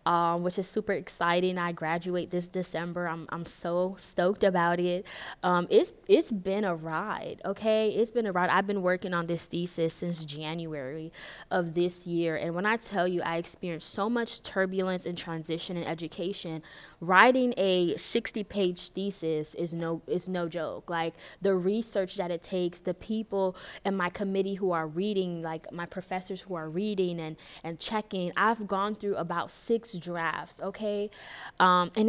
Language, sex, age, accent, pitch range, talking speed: English, female, 20-39, American, 175-205 Hz, 170 wpm